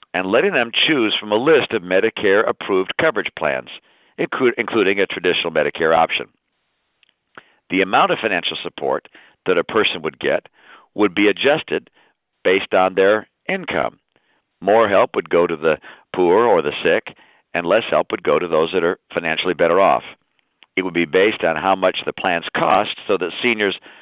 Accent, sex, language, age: American, male, English, 50-69